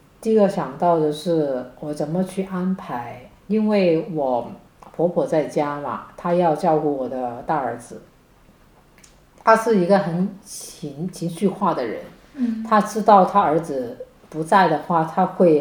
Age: 50-69